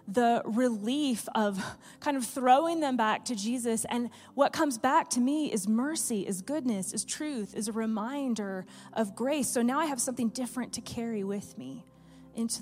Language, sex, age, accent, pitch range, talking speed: English, female, 30-49, American, 195-245 Hz, 180 wpm